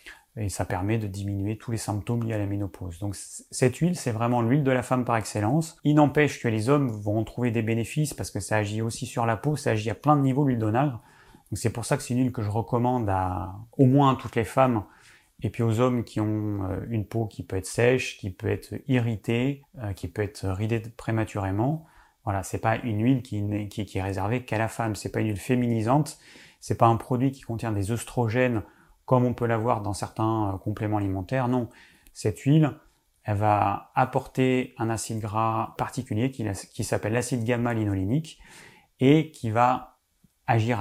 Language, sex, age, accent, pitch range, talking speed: French, male, 30-49, French, 105-130 Hz, 210 wpm